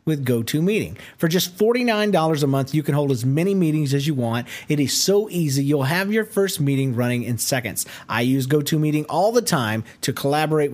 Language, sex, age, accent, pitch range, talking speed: English, male, 40-59, American, 125-170 Hz, 200 wpm